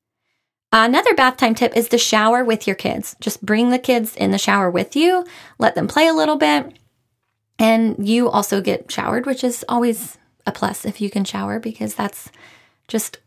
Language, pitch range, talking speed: English, 200-255 Hz, 190 wpm